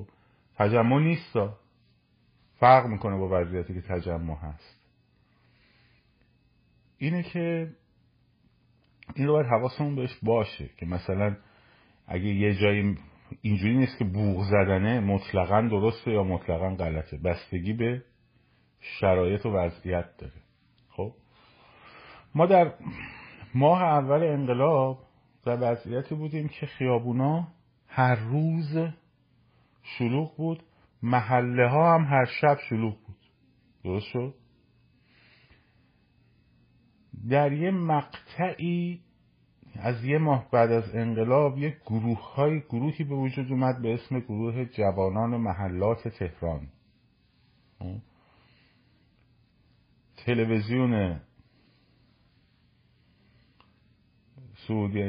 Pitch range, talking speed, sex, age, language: 100-135 Hz, 95 wpm, male, 50-69, Persian